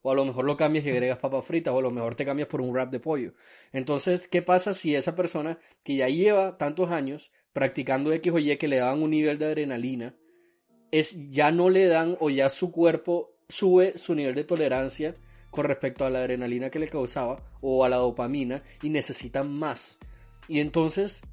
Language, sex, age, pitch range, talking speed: Spanish, male, 20-39, 135-175 Hz, 210 wpm